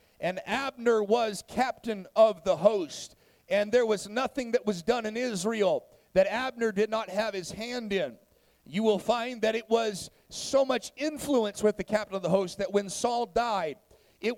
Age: 40-59